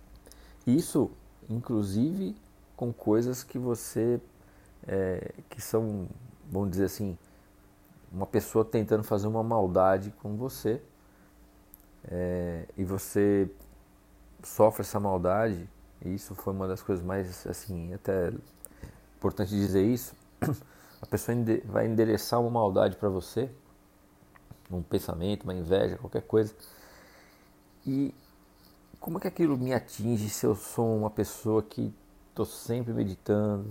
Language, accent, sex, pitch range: English, Brazilian, male, 95-115 Hz